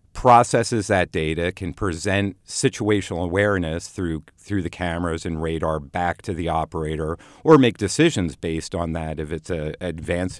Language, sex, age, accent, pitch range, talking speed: English, male, 50-69, American, 85-105 Hz, 155 wpm